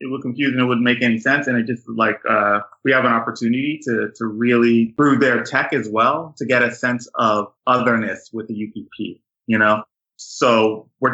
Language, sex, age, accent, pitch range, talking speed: English, male, 20-39, American, 110-135 Hz, 210 wpm